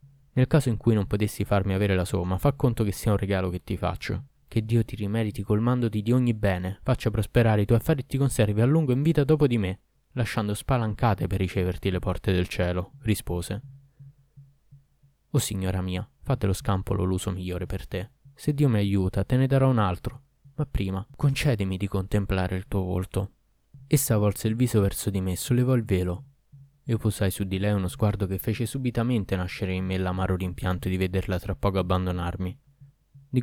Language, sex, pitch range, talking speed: Italian, male, 95-130 Hz, 195 wpm